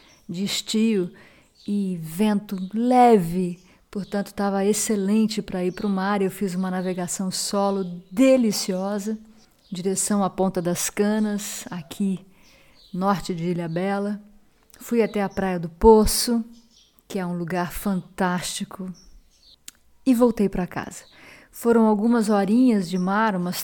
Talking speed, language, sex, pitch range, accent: 125 wpm, Portuguese, female, 180-215 Hz, Brazilian